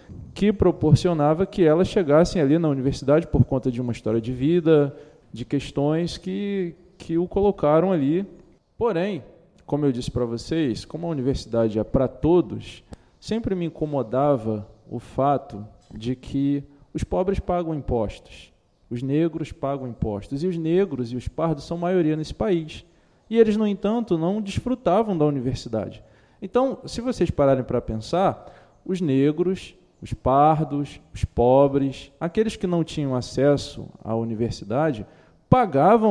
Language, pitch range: Portuguese, 130-180 Hz